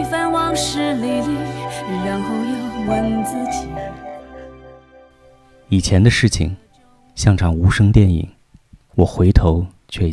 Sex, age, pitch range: male, 30-49, 90-115 Hz